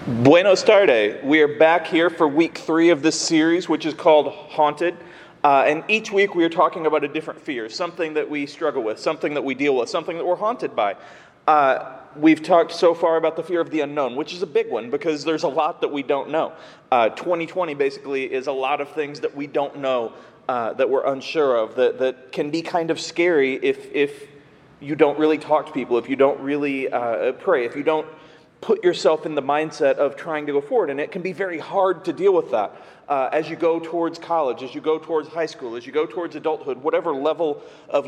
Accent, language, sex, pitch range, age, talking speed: American, English, male, 145-175 Hz, 30-49, 235 wpm